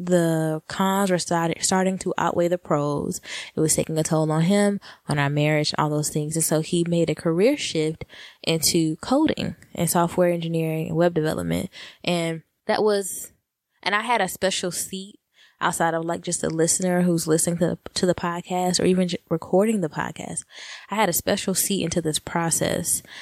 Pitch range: 155-180 Hz